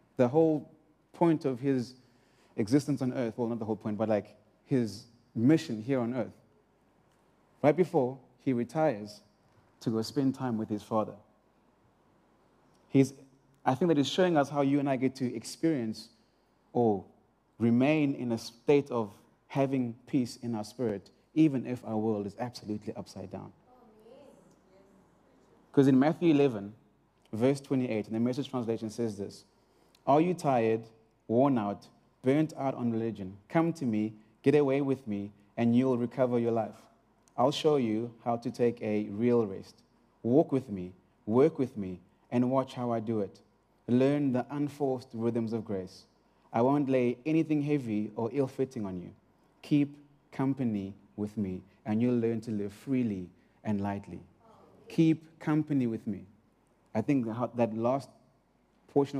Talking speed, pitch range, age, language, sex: 155 wpm, 110-140 Hz, 30-49, English, male